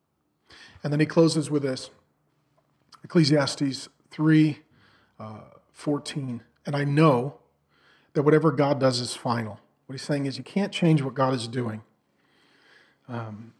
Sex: male